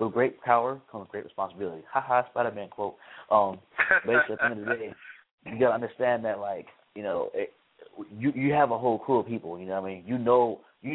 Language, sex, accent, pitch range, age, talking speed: English, male, American, 100-125 Hz, 20-39, 230 wpm